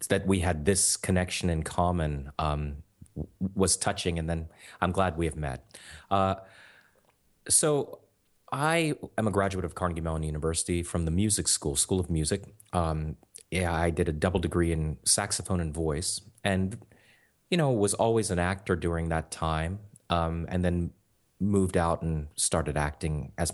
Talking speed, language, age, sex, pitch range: 165 wpm, English, 30-49, male, 85-100 Hz